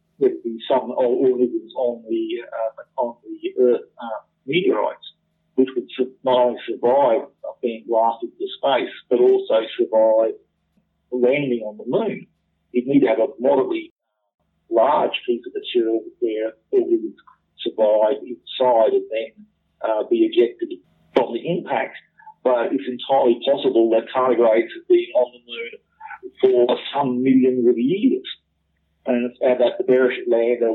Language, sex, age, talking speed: English, male, 50-69, 145 wpm